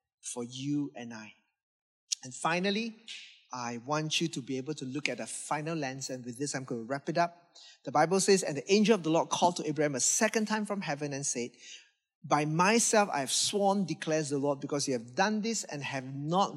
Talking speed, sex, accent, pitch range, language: 225 wpm, male, Malaysian, 135-170 Hz, English